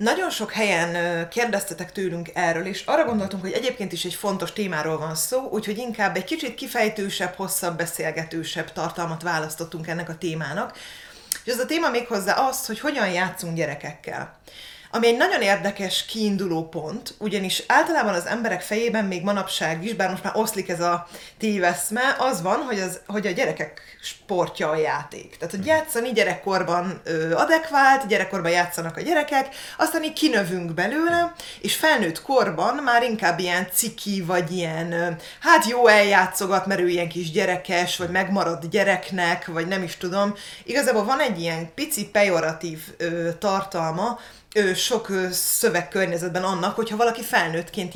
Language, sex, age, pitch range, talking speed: Hungarian, female, 30-49, 175-225 Hz, 150 wpm